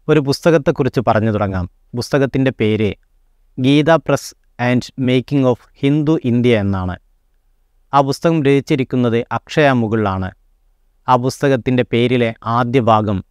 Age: 30-49